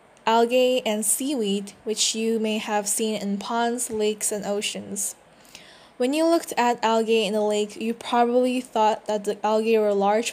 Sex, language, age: female, Korean, 10-29